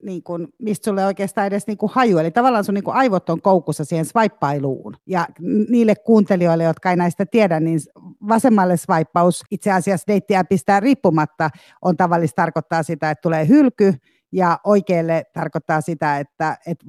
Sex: female